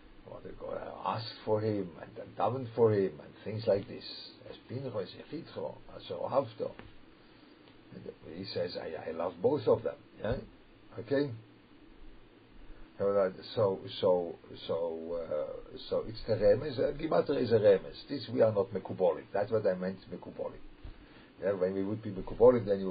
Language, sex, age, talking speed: English, male, 50-69, 140 wpm